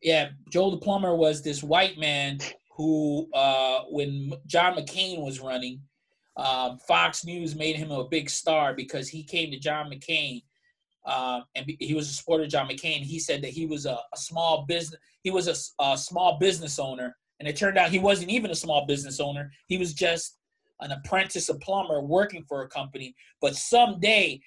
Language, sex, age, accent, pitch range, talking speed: English, male, 20-39, American, 145-190 Hz, 190 wpm